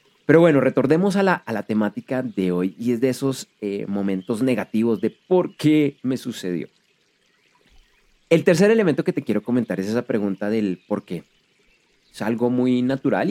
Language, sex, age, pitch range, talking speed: Spanish, male, 30-49, 105-150 Hz, 175 wpm